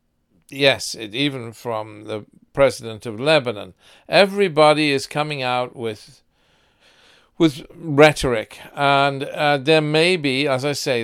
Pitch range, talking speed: 120-155 Hz, 125 wpm